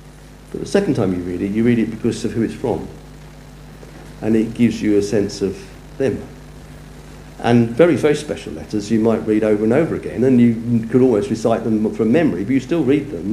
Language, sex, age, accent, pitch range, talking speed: English, male, 50-69, British, 110-145 Hz, 215 wpm